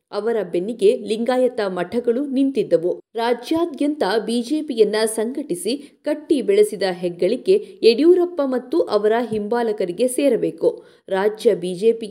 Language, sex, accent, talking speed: Kannada, female, native, 90 wpm